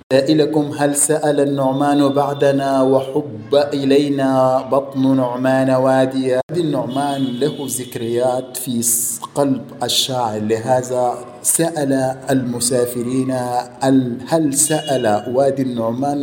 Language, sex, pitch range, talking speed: Arabic, male, 120-140 Hz, 90 wpm